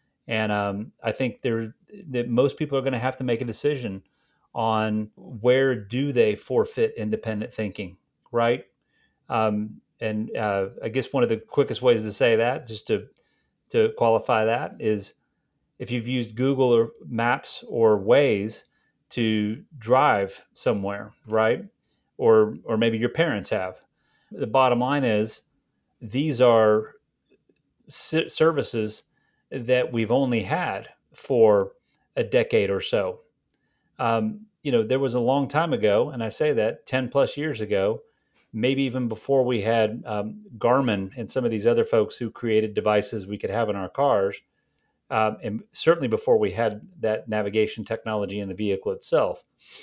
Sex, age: male, 30-49